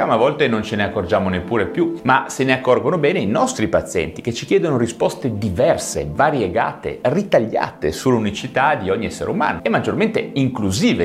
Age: 30-49